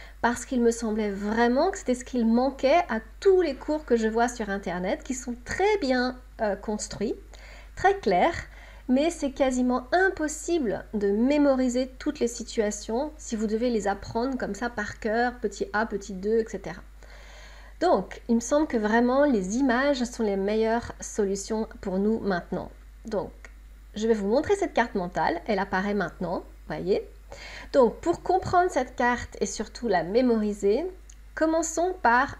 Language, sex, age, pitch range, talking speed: French, female, 40-59, 210-275 Hz, 165 wpm